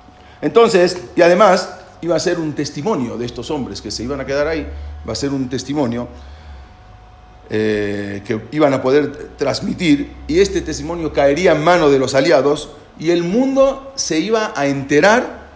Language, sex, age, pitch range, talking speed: English, male, 40-59, 115-170 Hz, 170 wpm